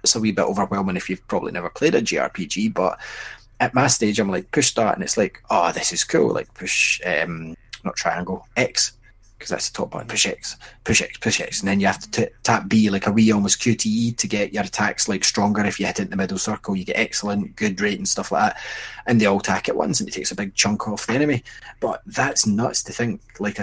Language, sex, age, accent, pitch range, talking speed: English, male, 20-39, British, 95-110 Hz, 260 wpm